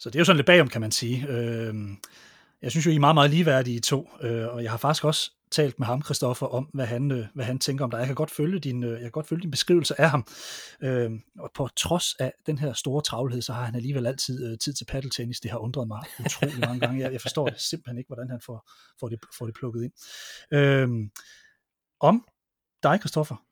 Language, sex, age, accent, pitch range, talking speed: Danish, male, 30-49, native, 125-165 Hz, 230 wpm